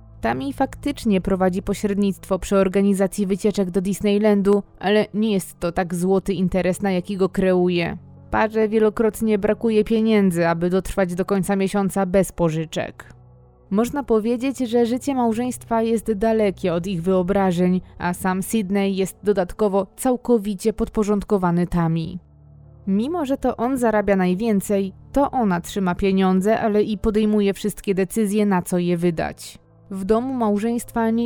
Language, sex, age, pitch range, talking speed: Polish, female, 20-39, 185-220 Hz, 140 wpm